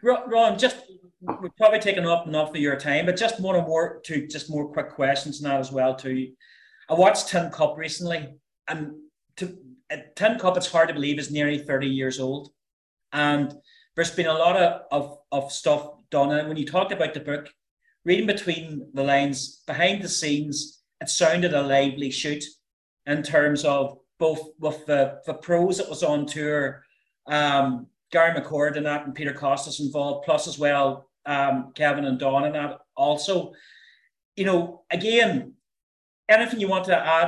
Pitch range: 145-175 Hz